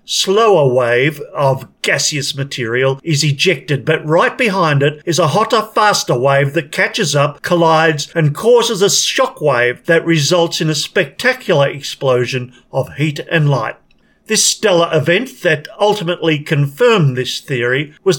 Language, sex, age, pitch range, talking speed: English, male, 50-69, 145-190 Hz, 145 wpm